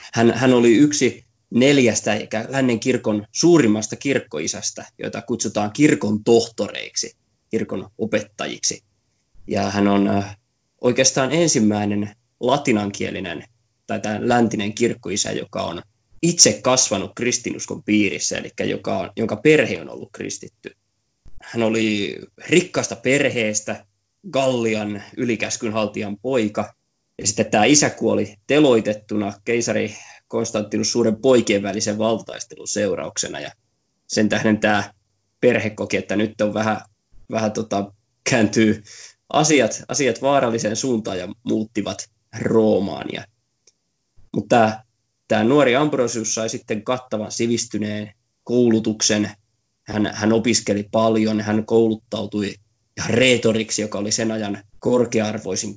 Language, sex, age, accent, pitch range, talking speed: Finnish, male, 20-39, native, 105-120 Hz, 110 wpm